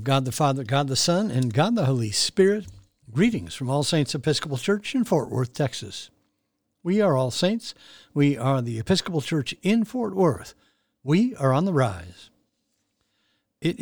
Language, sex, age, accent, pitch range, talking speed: English, male, 60-79, American, 125-165 Hz, 170 wpm